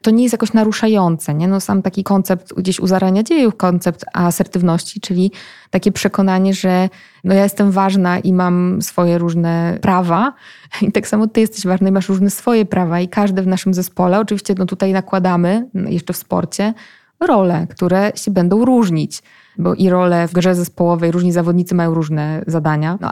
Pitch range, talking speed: 170-200 Hz, 180 wpm